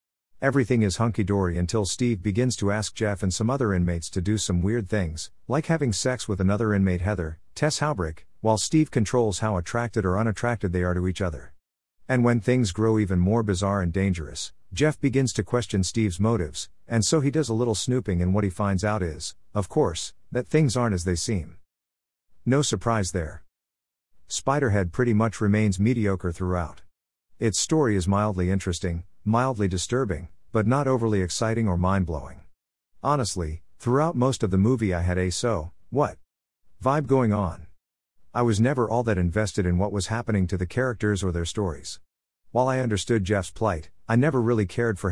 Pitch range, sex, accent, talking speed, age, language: 90-115 Hz, male, American, 180 wpm, 50-69, English